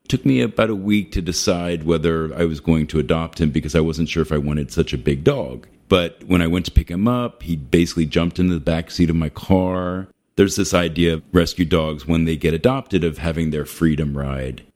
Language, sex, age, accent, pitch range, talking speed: English, male, 40-59, American, 80-95 Hz, 235 wpm